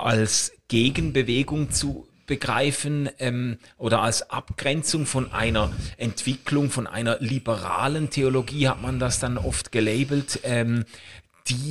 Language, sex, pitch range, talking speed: German, male, 120-145 Hz, 120 wpm